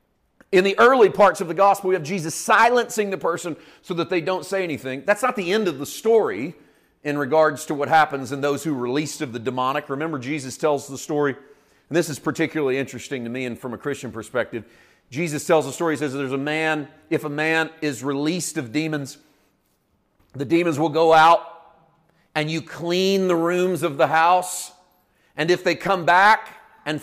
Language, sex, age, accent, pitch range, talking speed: English, male, 40-59, American, 150-185 Hz, 200 wpm